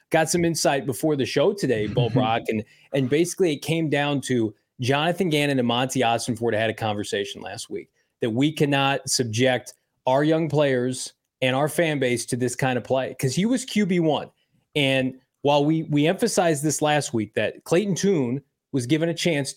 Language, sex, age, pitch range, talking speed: English, male, 20-39, 135-180 Hz, 190 wpm